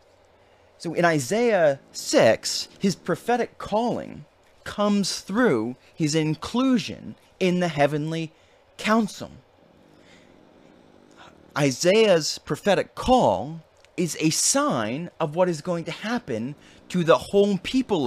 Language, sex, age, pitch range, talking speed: English, male, 30-49, 130-195 Hz, 105 wpm